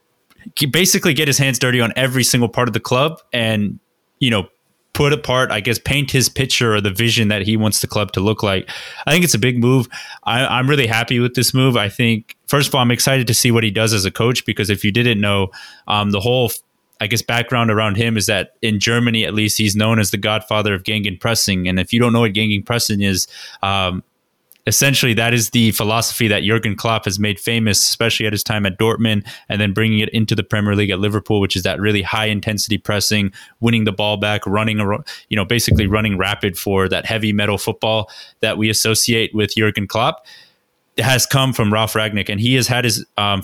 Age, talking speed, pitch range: 20-39, 230 wpm, 105-120 Hz